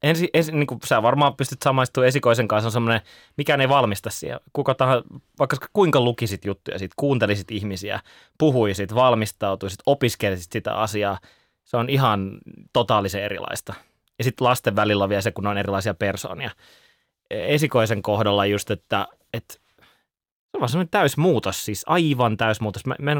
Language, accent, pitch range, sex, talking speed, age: Finnish, native, 105-135 Hz, male, 160 wpm, 20-39